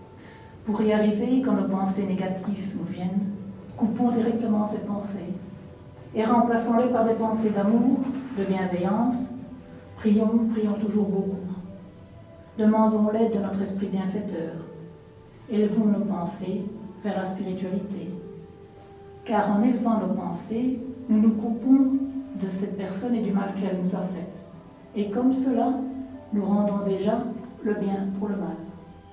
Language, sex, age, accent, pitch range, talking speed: French, female, 60-79, French, 195-220 Hz, 135 wpm